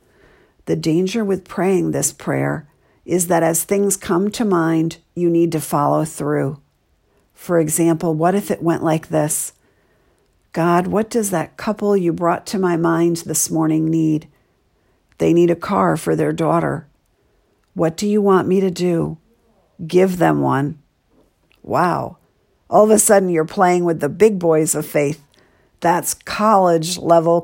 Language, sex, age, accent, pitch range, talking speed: English, female, 50-69, American, 160-190 Hz, 155 wpm